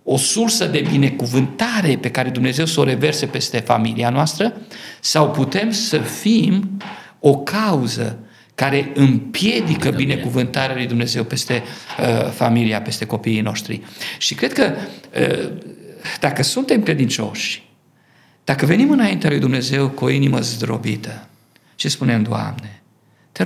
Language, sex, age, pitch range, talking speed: Romanian, male, 50-69, 115-155 Hz, 130 wpm